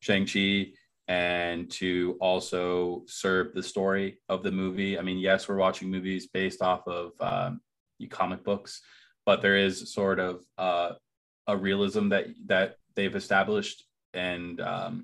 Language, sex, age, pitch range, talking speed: English, male, 20-39, 90-105 Hz, 145 wpm